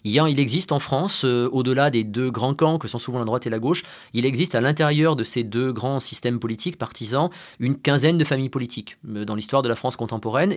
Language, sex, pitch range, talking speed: French, male, 120-165 Hz, 225 wpm